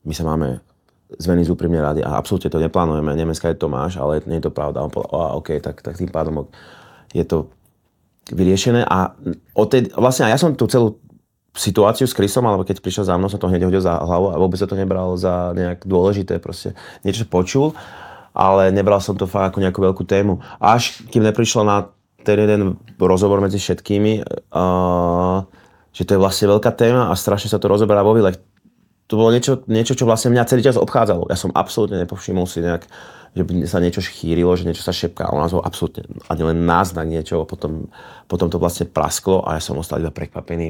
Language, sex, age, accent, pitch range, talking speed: Czech, male, 30-49, native, 80-100 Hz, 205 wpm